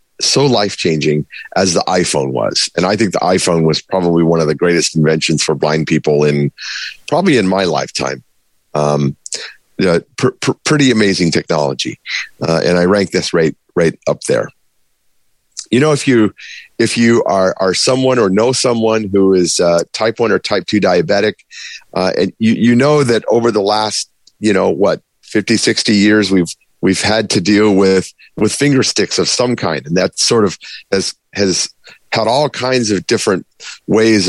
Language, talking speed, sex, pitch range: English, 180 wpm, male, 85-110 Hz